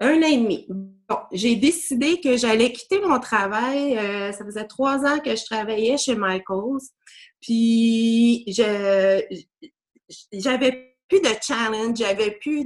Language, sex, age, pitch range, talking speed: French, female, 30-49, 215-280 Hz, 145 wpm